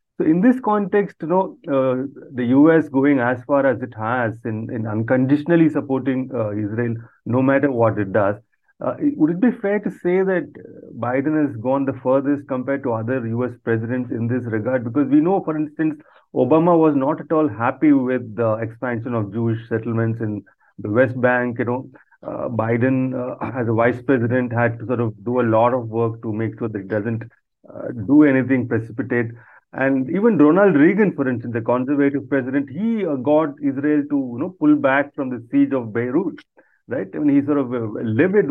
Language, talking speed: English, 200 wpm